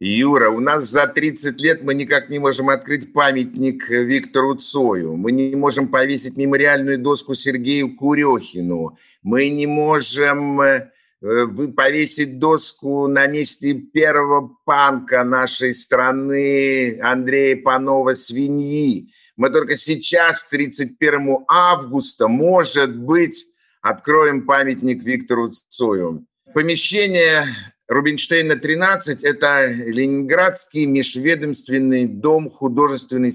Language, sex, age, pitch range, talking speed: Russian, male, 50-69, 125-155 Hz, 95 wpm